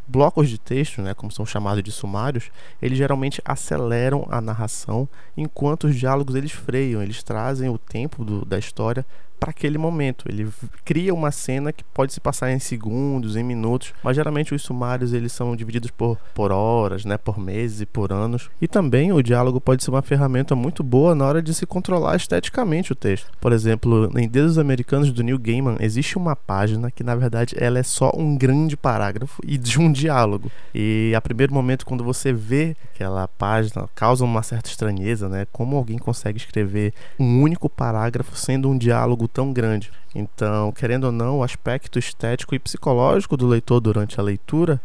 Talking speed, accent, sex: 185 wpm, Brazilian, male